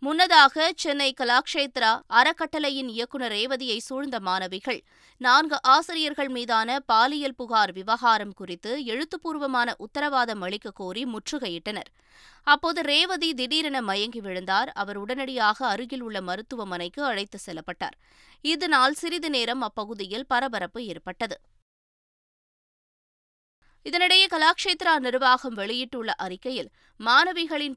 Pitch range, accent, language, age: 215-295 Hz, native, Tamil, 20-39